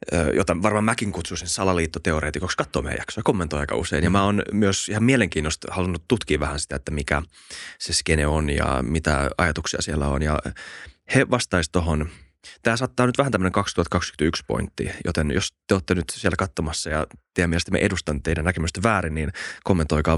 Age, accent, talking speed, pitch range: 20-39, native, 175 wpm, 80-100 Hz